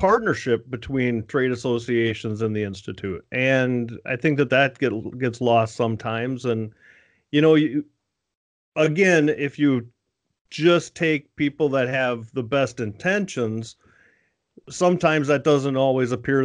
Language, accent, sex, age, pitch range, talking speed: English, American, male, 40-59, 115-140 Hz, 130 wpm